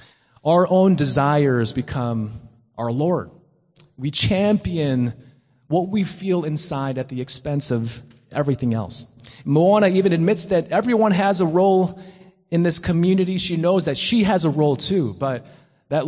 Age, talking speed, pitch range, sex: 30-49, 145 wpm, 130-175 Hz, male